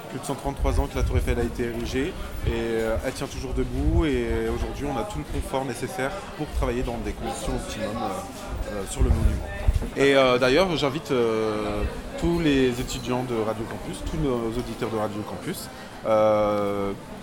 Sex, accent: male, French